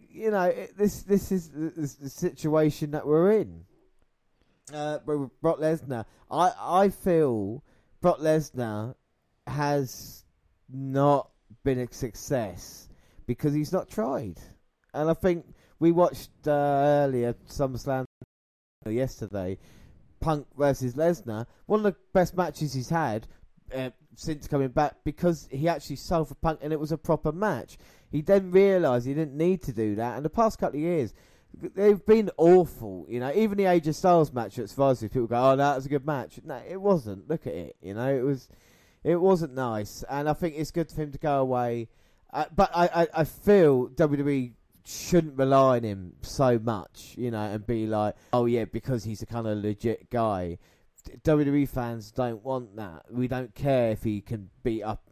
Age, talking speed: 20-39, 175 wpm